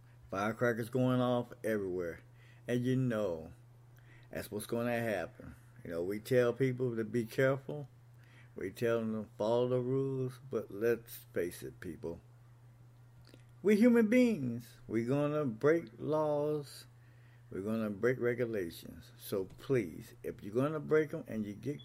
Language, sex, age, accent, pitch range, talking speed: English, male, 60-79, American, 120-130 Hz, 155 wpm